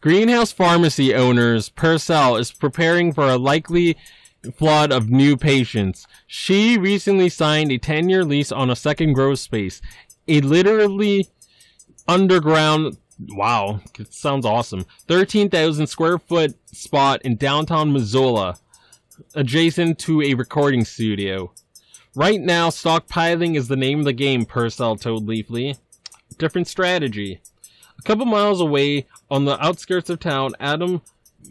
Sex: male